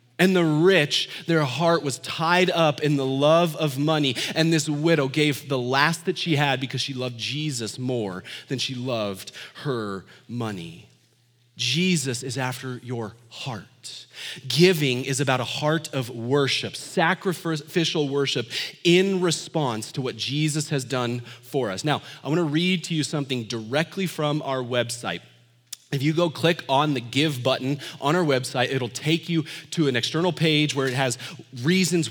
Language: English